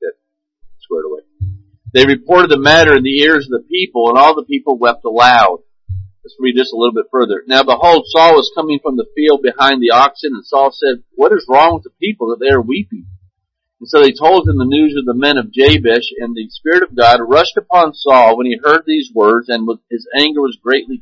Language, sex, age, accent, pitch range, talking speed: English, male, 50-69, American, 115-170 Hz, 225 wpm